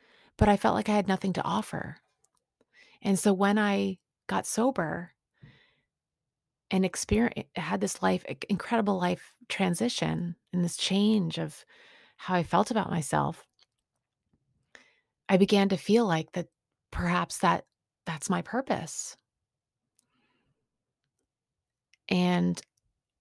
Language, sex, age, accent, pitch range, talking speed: English, female, 30-49, American, 150-185 Hz, 115 wpm